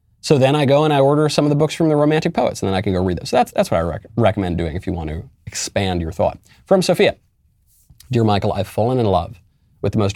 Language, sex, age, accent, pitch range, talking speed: English, male, 30-49, American, 95-125 Hz, 285 wpm